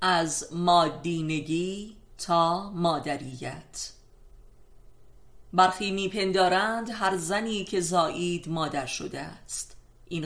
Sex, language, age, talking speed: female, Persian, 30-49, 80 wpm